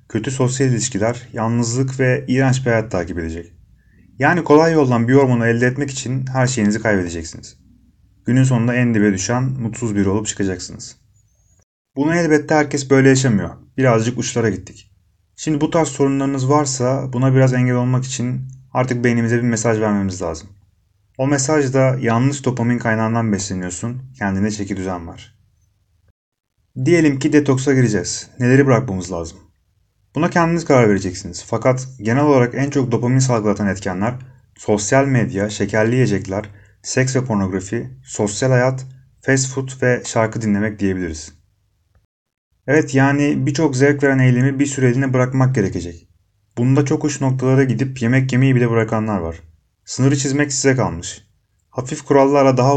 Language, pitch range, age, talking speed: Turkish, 100-130 Hz, 30-49, 140 wpm